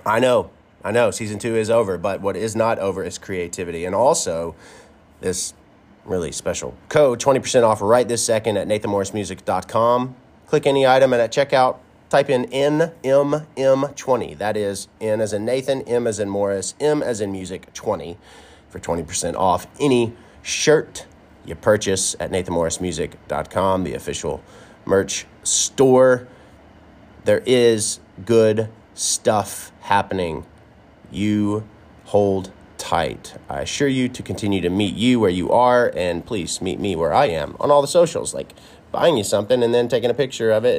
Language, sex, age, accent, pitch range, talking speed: English, male, 30-49, American, 95-125 Hz, 155 wpm